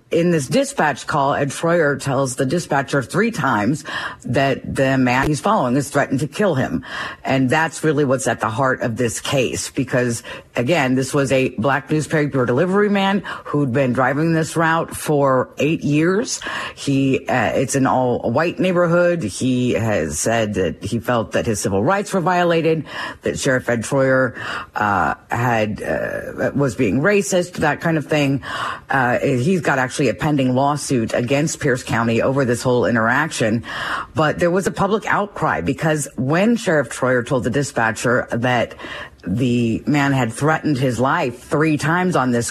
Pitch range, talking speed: 125-155 Hz, 165 wpm